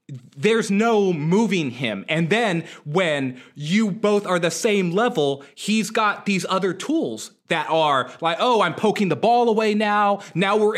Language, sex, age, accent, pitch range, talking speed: English, male, 20-39, American, 140-195 Hz, 165 wpm